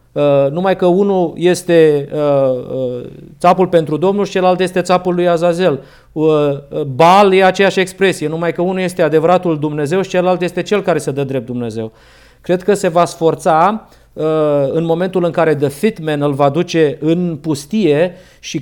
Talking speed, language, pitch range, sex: 175 wpm, Romanian, 150-185 Hz, male